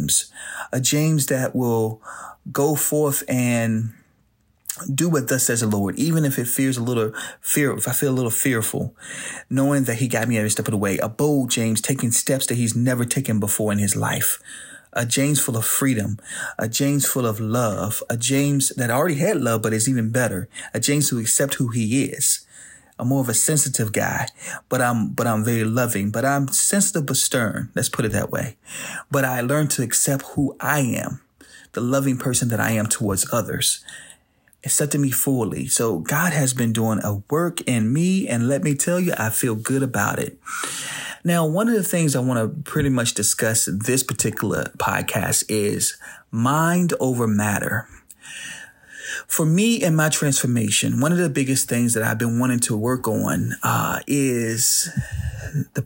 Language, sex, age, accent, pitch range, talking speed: English, male, 30-49, American, 115-140 Hz, 185 wpm